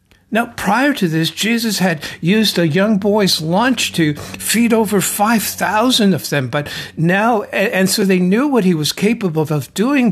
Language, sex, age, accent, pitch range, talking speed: English, male, 60-79, American, 175-235 Hz, 170 wpm